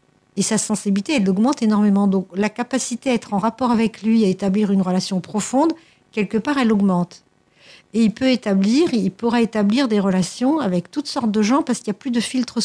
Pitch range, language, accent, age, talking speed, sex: 190-260 Hz, French, French, 60-79, 215 wpm, female